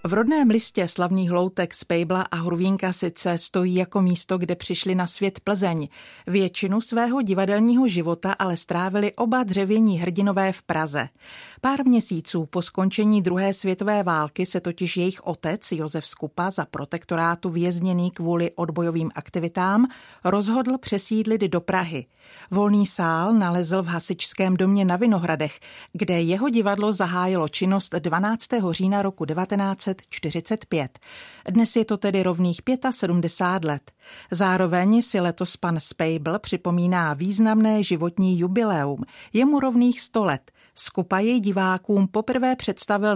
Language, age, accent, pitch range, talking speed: Czech, 40-59, native, 175-205 Hz, 130 wpm